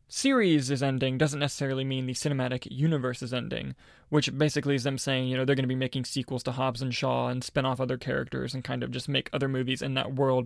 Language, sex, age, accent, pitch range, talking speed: English, male, 20-39, American, 130-150 Hz, 245 wpm